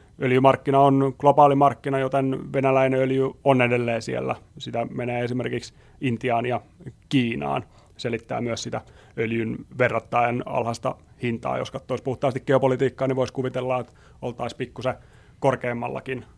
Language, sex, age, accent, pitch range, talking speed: Finnish, male, 30-49, native, 120-130 Hz, 125 wpm